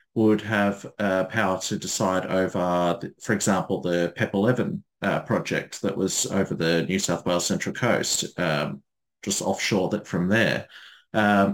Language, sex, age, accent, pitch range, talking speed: English, male, 30-49, Australian, 95-110 Hz, 160 wpm